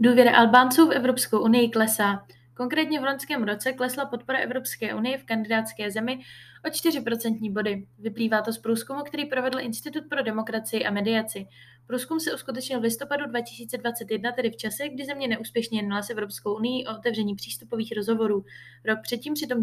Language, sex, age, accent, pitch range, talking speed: Czech, female, 20-39, native, 210-255 Hz, 165 wpm